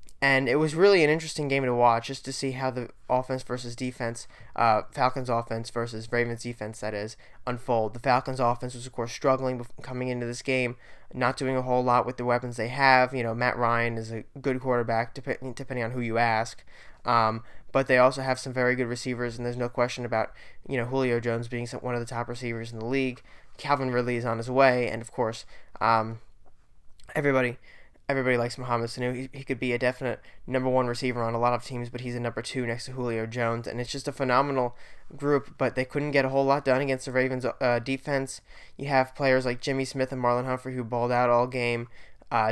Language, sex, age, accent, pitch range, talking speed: English, male, 20-39, American, 120-130 Hz, 225 wpm